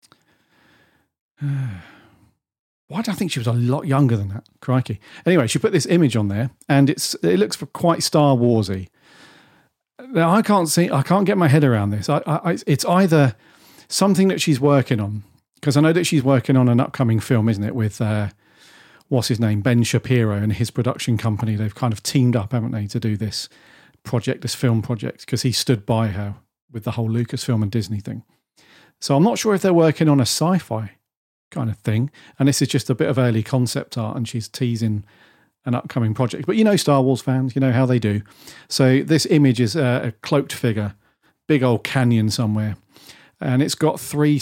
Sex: male